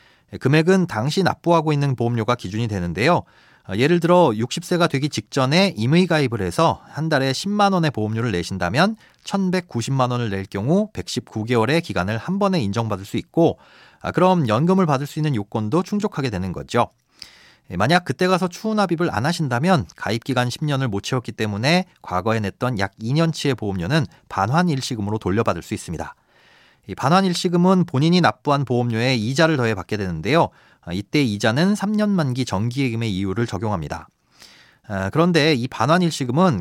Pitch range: 110-175 Hz